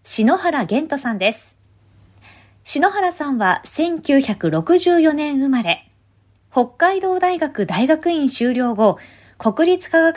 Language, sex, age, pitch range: Japanese, female, 20-39, 205-310 Hz